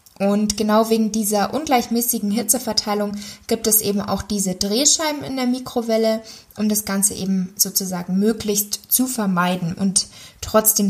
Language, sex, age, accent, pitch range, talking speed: German, female, 20-39, German, 195-220 Hz, 140 wpm